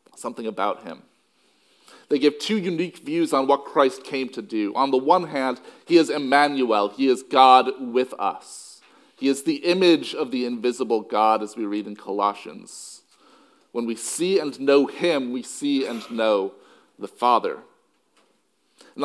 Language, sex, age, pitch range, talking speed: English, male, 40-59, 125-175 Hz, 165 wpm